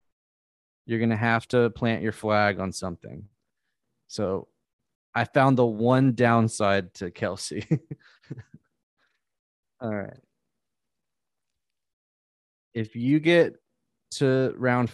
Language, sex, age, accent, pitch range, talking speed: English, male, 20-39, American, 105-120 Hz, 100 wpm